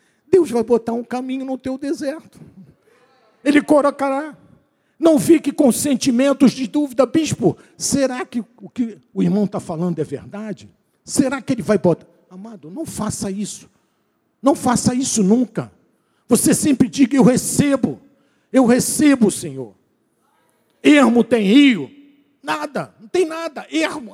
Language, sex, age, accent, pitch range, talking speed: Portuguese, male, 50-69, Brazilian, 205-275 Hz, 140 wpm